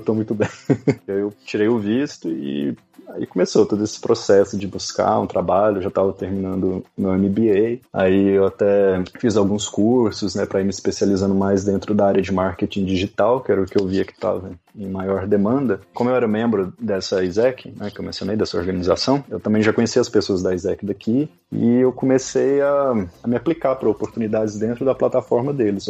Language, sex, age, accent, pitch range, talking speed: Portuguese, male, 20-39, Brazilian, 95-115 Hz, 195 wpm